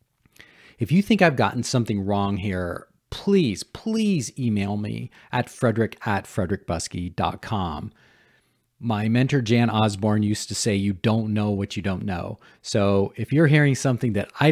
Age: 40-59